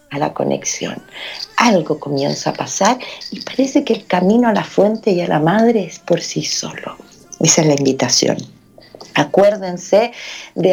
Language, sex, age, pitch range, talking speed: Spanish, female, 40-59, 185-255 Hz, 160 wpm